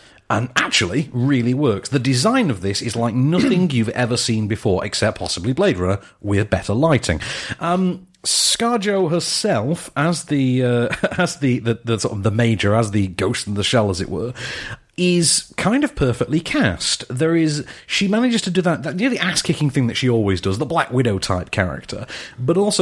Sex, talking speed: male, 185 wpm